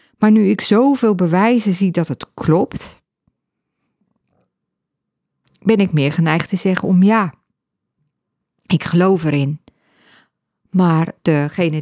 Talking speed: 110 wpm